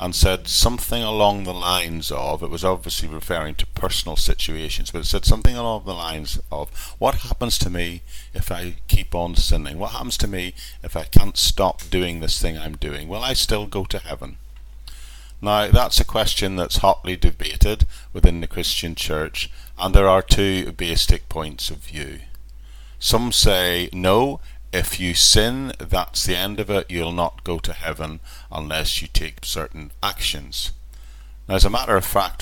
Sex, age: male, 40-59